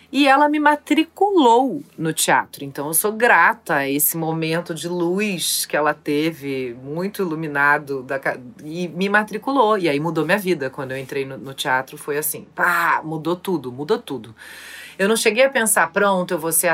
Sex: female